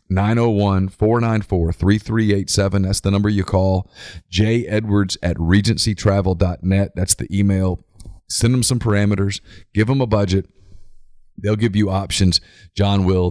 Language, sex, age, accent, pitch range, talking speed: English, male, 40-59, American, 90-105 Hz, 120 wpm